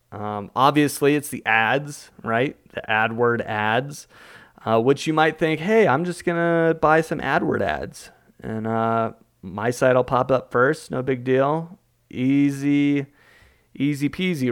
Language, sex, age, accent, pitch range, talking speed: English, male, 30-49, American, 115-140 Hz, 150 wpm